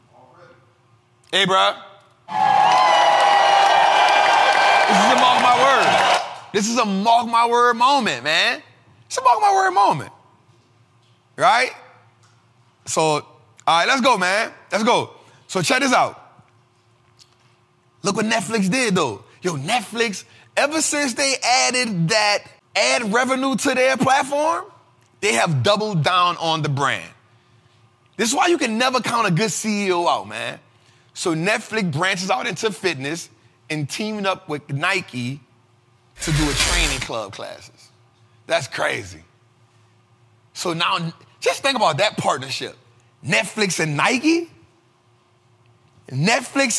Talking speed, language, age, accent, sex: 130 wpm, English, 30-49, American, male